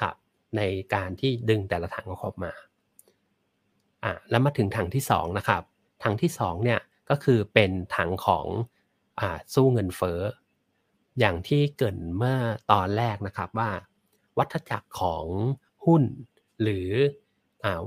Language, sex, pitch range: Thai, male, 95-125 Hz